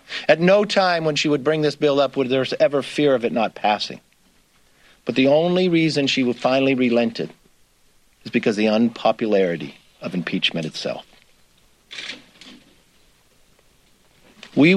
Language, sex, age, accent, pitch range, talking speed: English, male, 50-69, American, 125-180 Hz, 140 wpm